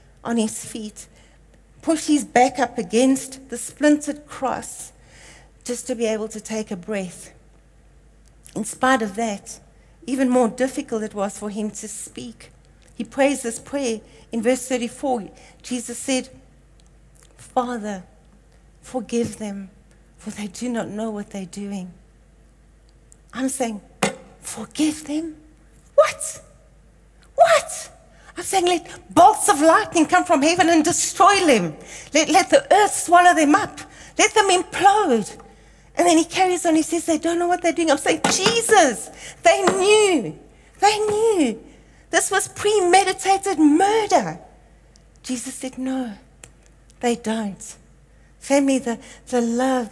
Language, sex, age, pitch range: English, female, 60-79, 220-335 Hz